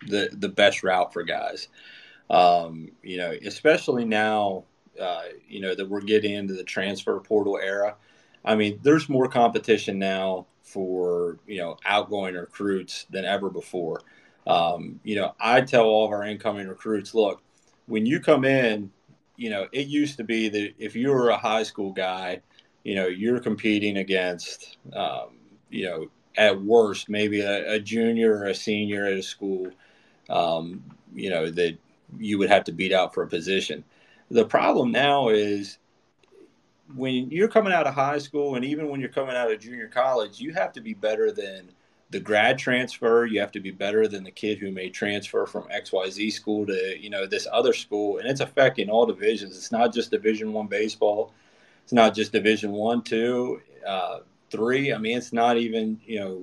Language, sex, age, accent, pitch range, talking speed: English, male, 30-49, American, 100-120 Hz, 185 wpm